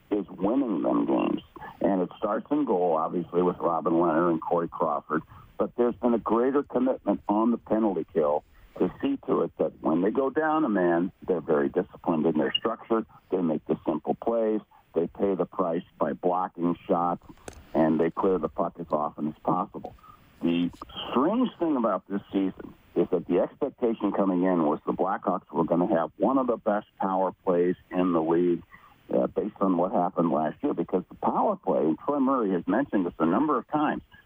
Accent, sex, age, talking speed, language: American, male, 60-79, 200 wpm, English